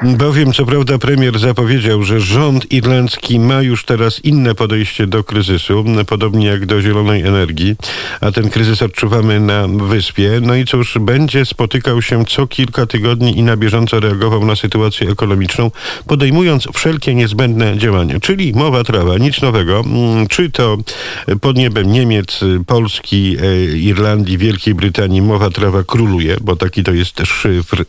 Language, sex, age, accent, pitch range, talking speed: Polish, male, 50-69, native, 100-120 Hz, 145 wpm